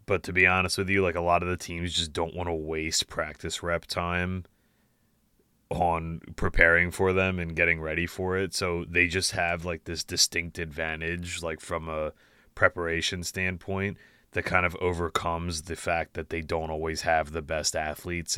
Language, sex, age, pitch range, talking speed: English, male, 30-49, 85-95 Hz, 185 wpm